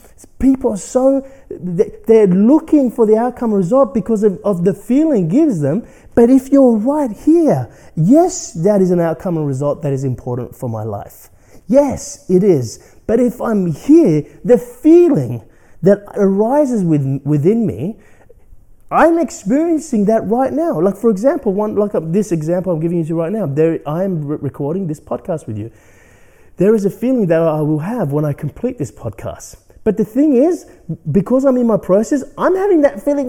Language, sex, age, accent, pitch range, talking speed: English, male, 30-49, Australian, 190-285 Hz, 185 wpm